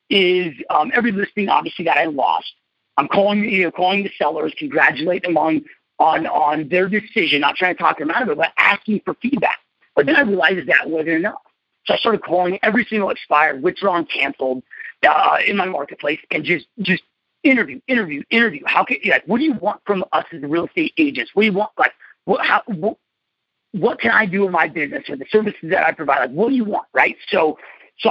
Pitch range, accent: 165-230 Hz, American